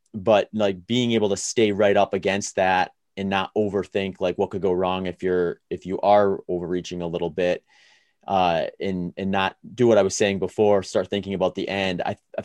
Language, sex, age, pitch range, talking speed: English, male, 30-49, 90-100 Hz, 210 wpm